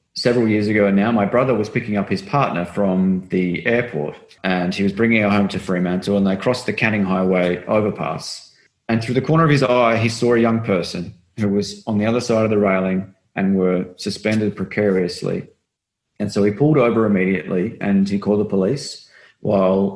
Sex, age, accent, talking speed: male, 30-49, Australian, 200 wpm